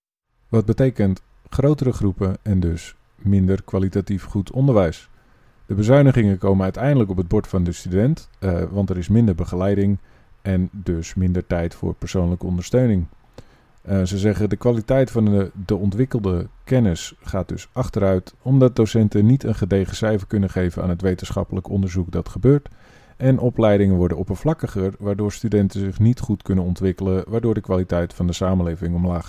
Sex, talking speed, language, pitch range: male, 160 wpm, Dutch, 95-115 Hz